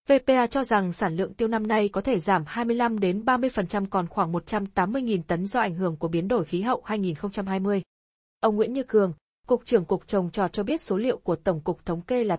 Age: 20-39